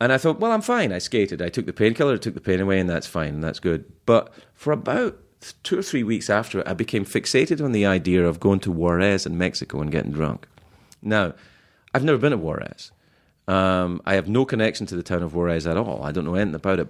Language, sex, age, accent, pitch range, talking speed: English, male, 30-49, British, 90-120 Hz, 250 wpm